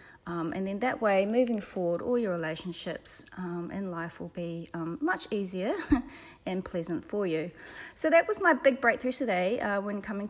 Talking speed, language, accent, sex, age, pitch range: 185 wpm, English, Australian, female, 30-49, 190-265 Hz